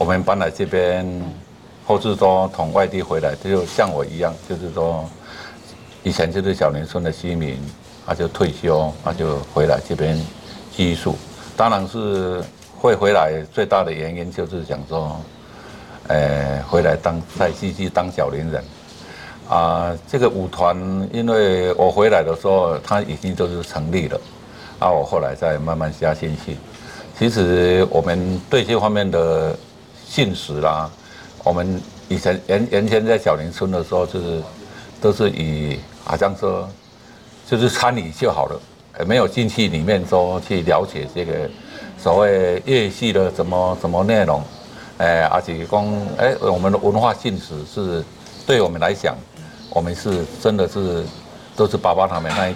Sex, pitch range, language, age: male, 80-95 Hz, Chinese, 60-79